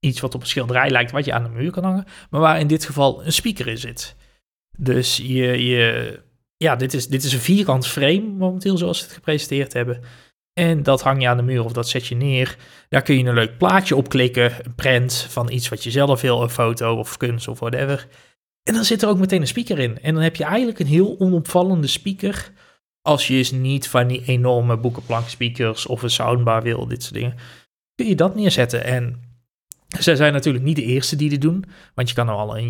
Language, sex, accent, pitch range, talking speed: Dutch, male, Dutch, 120-155 Hz, 230 wpm